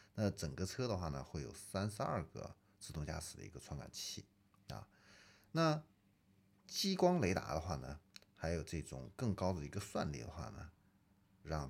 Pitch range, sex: 80-105 Hz, male